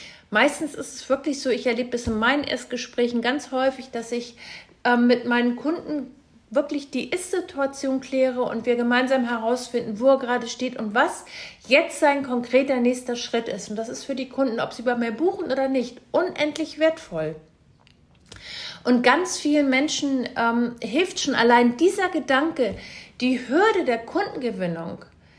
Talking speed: 160 wpm